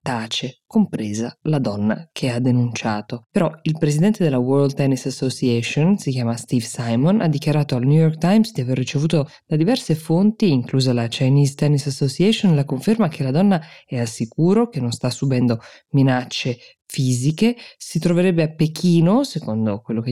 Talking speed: 165 wpm